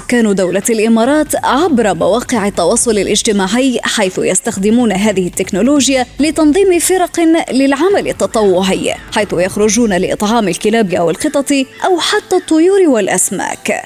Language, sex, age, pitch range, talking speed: Arabic, female, 20-39, 210-295 Hz, 110 wpm